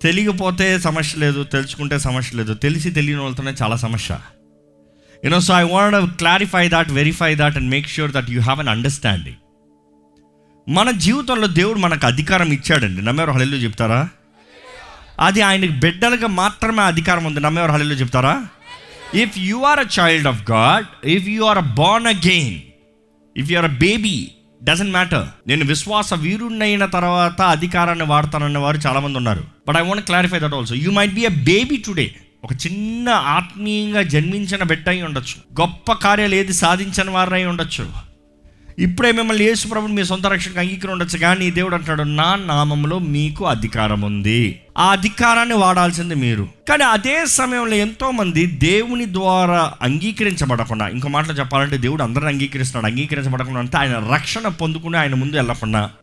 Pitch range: 130-190 Hz